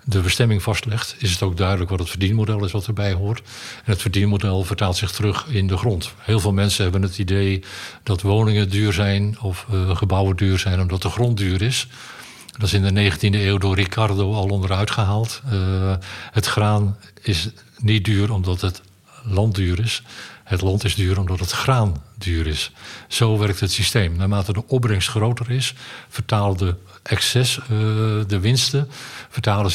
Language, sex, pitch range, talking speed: Dutch, male, 95-110 Hz, 180 wpm